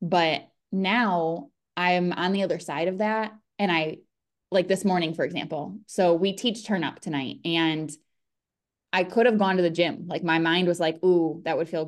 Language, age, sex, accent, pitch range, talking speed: English, 20-39, female, American, 165-200 Hz, 195 wpm